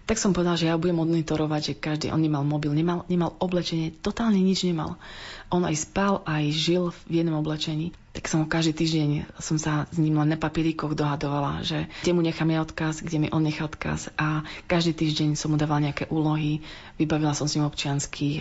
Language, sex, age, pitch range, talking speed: Slovak, female, 30-49, 150-165 Hz, 195 wpm